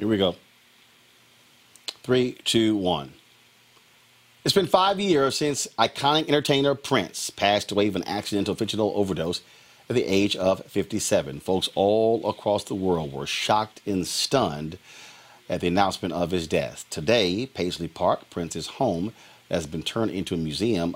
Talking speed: 150 wpm